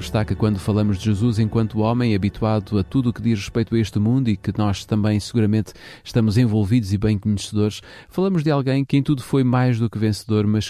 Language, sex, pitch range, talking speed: Portuguese, male, 100-125 Hz, 220 wpm